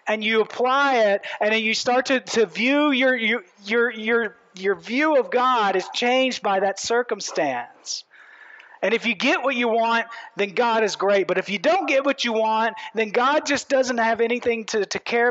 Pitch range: 185-250 Hz